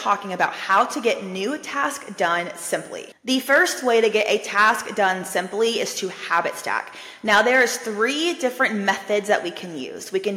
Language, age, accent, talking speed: English, 20-39, American, 190 wpm